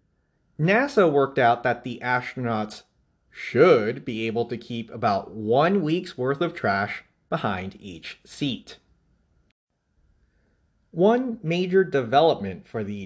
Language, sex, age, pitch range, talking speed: English, male, 30-49, 105-170 Hz, 115 wpm